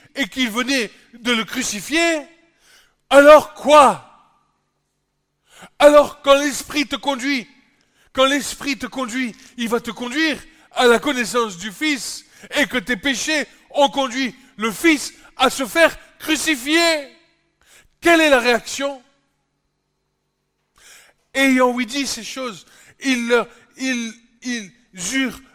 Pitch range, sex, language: 225-280 Hz, male, French